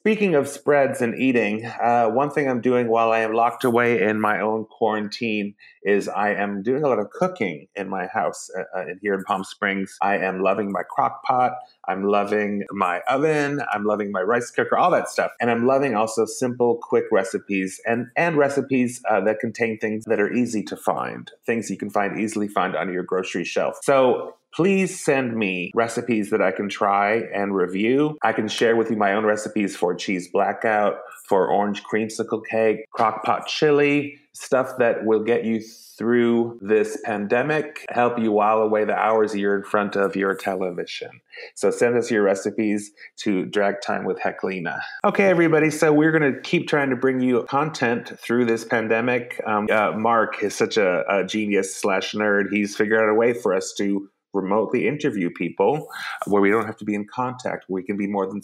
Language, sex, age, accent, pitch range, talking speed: English, male, 30-49, American, 105-125 Hz, 195 wpm